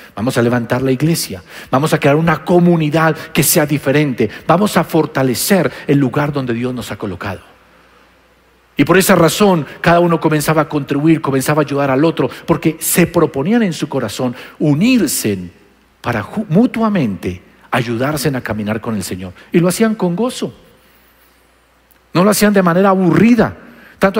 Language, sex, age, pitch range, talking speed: Spanish, male, 50-69, 145-190 Hz, 160 wpm